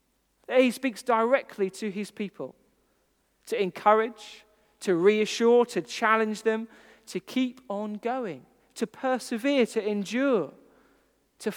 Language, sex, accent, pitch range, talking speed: English, male, British, 195-240 Hz, 115 wpm